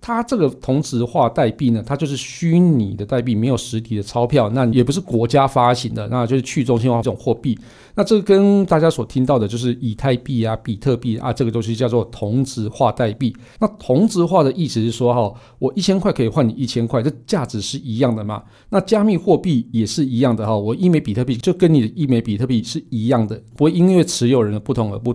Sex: male